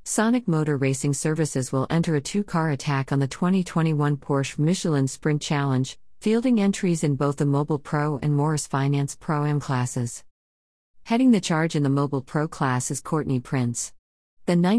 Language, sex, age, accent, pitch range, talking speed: English, female, 40-59, American, 135-160 Hz, 165 wpm